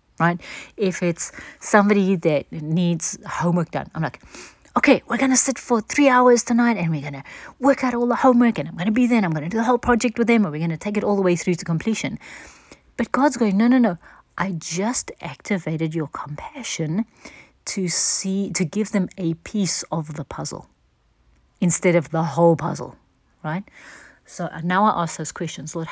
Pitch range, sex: 160-210 Hz, female